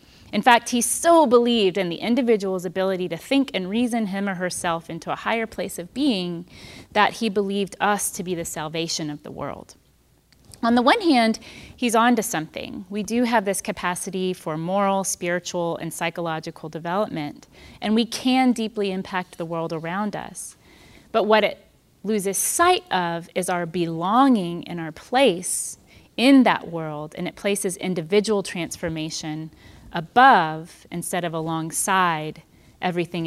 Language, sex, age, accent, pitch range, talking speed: English, female, 30-49, American, 165-220 Hz, 155 wpm